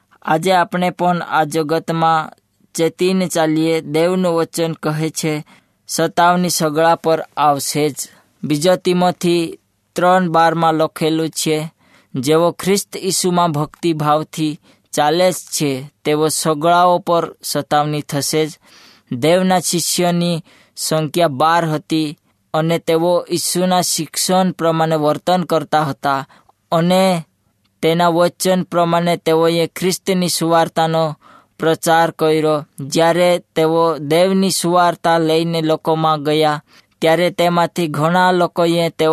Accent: native